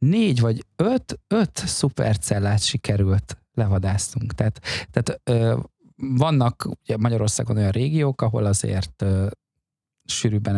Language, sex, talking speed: Hungarian, male, 110 wpm